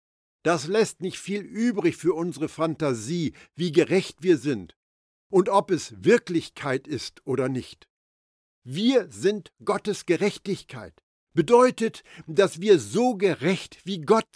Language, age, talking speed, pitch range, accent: German, 60-79, 125 wpm, 120-185 Hz, German